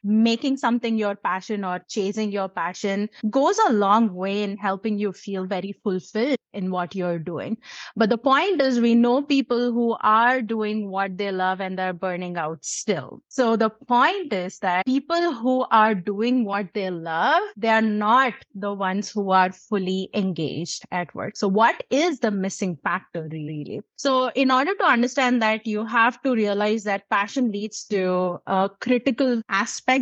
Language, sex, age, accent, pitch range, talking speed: English, female, 30-49, Indian, 190-240 Hz, 170 wpm